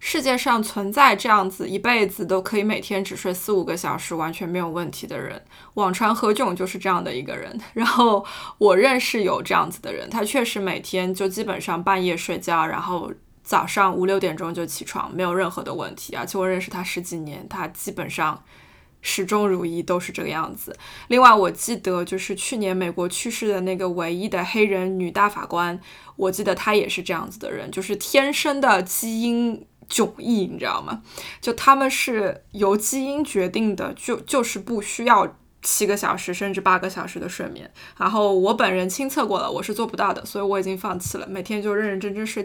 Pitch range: 185-230 Hz